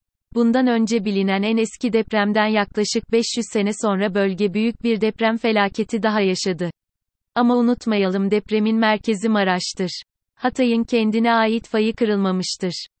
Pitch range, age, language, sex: 195-225 Hz, 30-49, Turkish, female